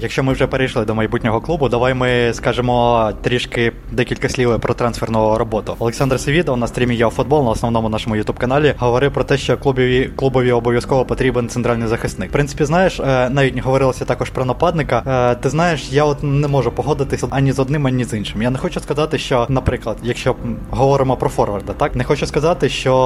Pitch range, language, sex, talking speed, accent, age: 120-145 Hz, Ukrainian, male, 190 wpm, native, 20-39